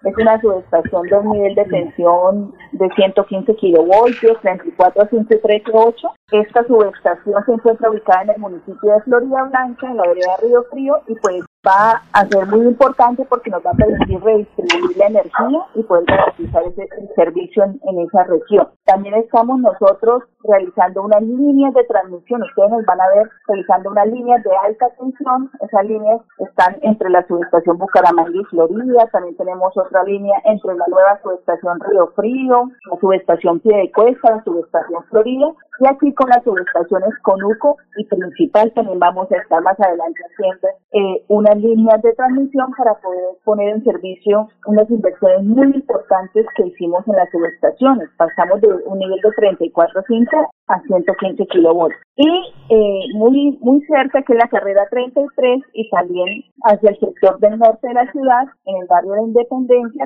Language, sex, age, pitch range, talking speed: Spanish, female, 30-49, 190-245 Hz, 165 wpm